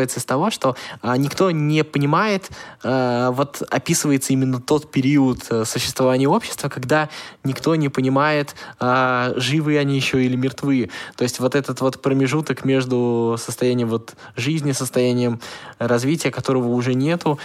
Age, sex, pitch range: 20-39, male, 120-145 Hz